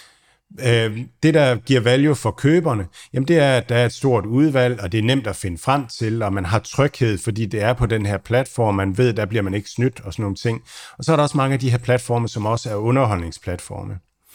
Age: 50-69